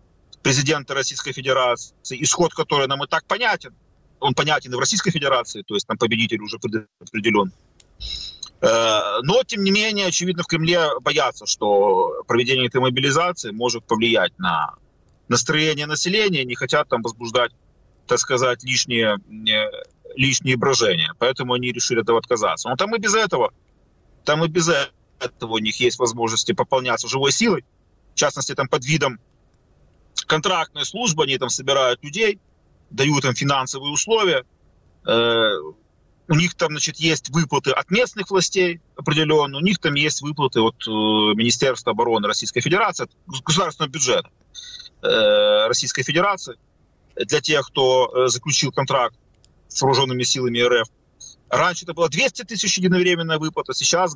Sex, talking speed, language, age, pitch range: male, 140 wpm, Ukrainian, 30-49, 120-175 Hz